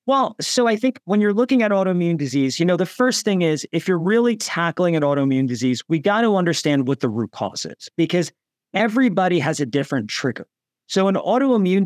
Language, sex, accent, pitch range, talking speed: English, male, American, 150-195 Hz, 205 wpm